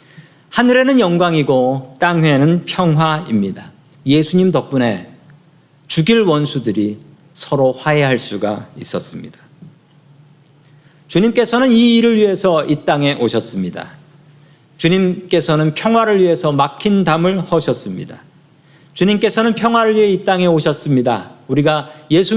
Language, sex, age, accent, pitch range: Korean, male, 40-59, native, 140-180 Hz